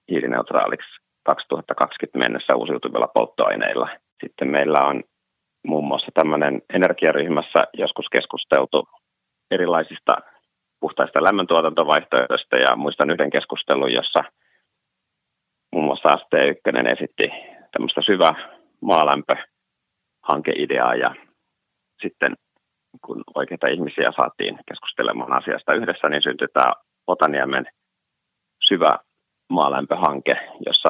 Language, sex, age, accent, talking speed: Finnish, male, 30-49, native, 85 wpm